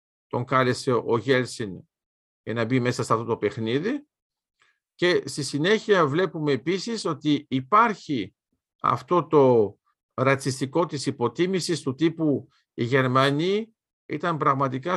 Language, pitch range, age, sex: Greek, 130-185 Hz, 50-69, male